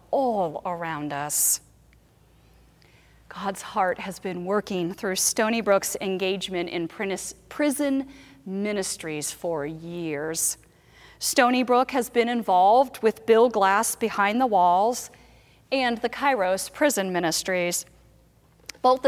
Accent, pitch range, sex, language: American, 175-225 Hz, female, English